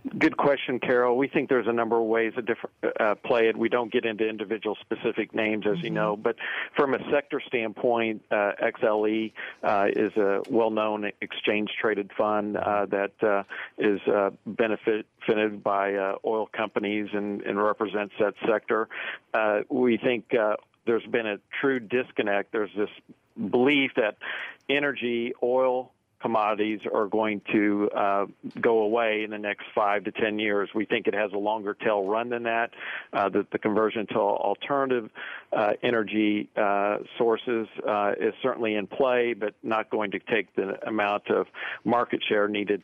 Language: English